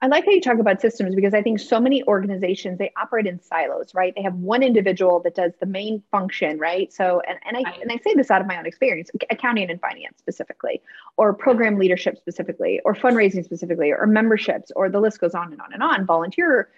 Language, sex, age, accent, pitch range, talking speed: English, female, 30-49, American, 180-230 Hz, 230 wpm